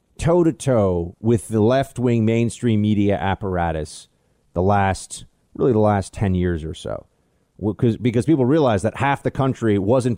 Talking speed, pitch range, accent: 165 wpm, 115-175 Hz, American